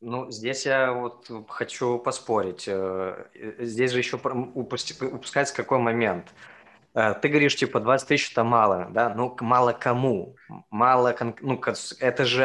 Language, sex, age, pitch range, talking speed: Russian, male, 20-39, 115-140 Hz, 130 wpm